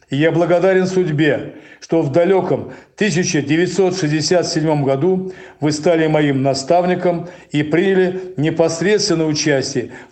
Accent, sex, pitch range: native, male, 145-180 Hz